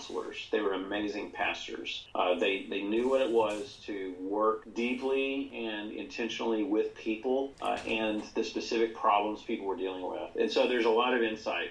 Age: 40-59